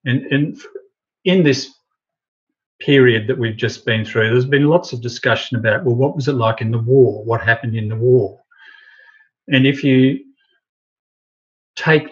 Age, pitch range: 50-69, 115-140 Hz